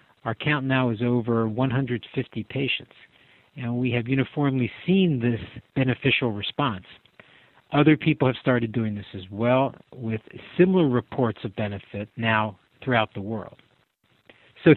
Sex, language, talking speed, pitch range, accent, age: male, English, 135 wpm, 110-135 Hz, American, 50-69